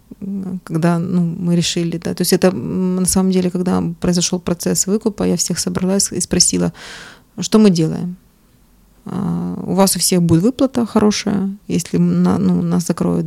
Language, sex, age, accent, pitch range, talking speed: Ukrainian, female, 20-39, native, 170-190 Hz, 155 wpm